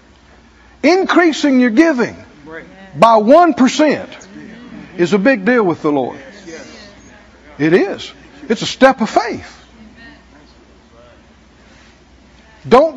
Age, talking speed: 60-79, 95 wpm